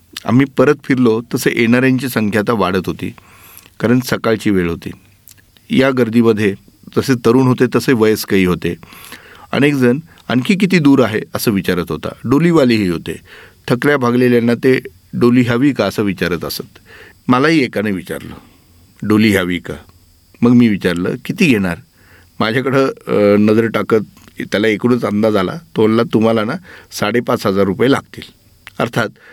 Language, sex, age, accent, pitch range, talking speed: Marathi, male, 40-59, native, 95-125 Hz, 125 wpm